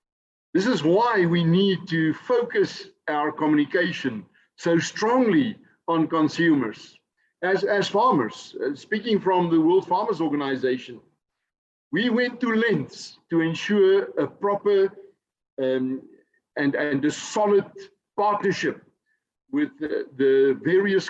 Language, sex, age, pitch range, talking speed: English, male, 60-79, 165-255 Hz, 115 wpm